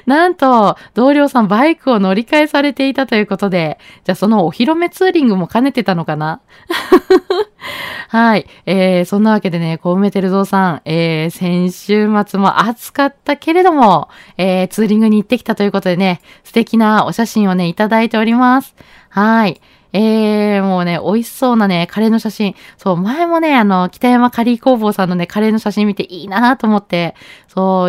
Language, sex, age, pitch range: Japanese, female, 20-39, 185-250 Hz